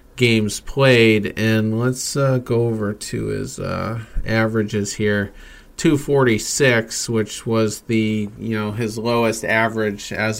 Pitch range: 110-130 Hz